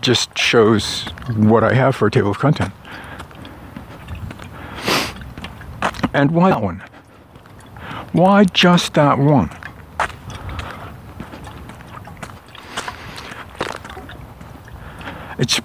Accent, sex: American, male